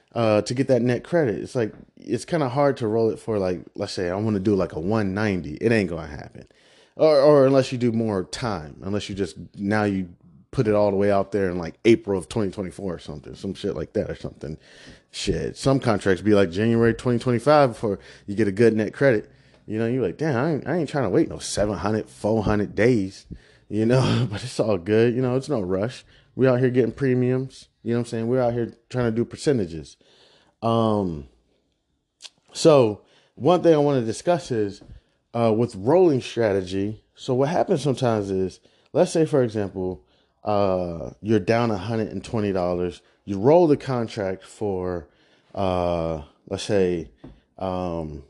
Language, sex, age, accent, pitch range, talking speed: English, male, 30-49, American, 95-120 Hz, 210 wpm